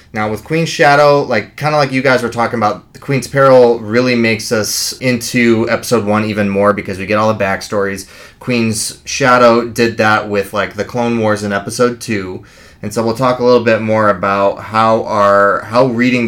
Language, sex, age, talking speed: English, male, 20-39, 205 wpm